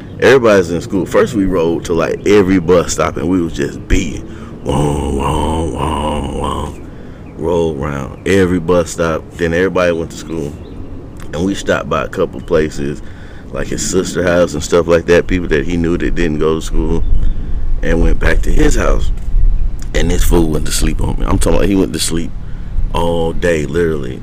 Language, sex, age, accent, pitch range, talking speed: English, male, 30-49, American, 75-90 Hz, 185 wpm